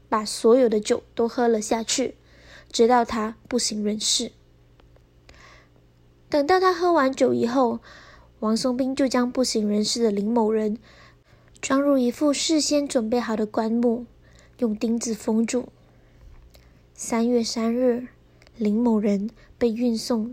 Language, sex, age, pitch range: Chinese, female, 20-39, 215-250 Hz